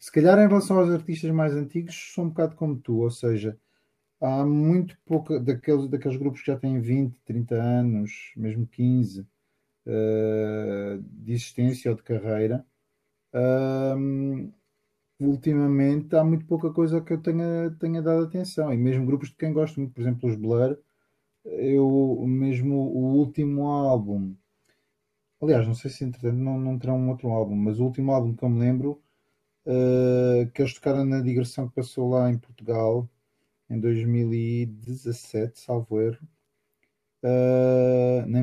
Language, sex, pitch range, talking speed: Portuguese, male, 120-145 Hz, 155 wpm